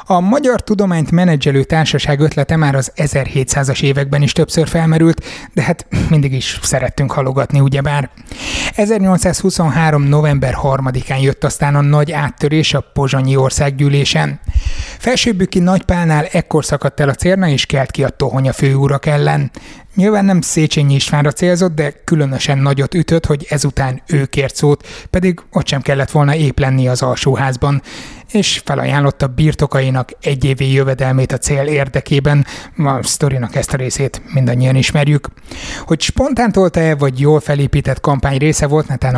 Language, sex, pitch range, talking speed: Hungarian, male, 135-155 Hz, 140 wpm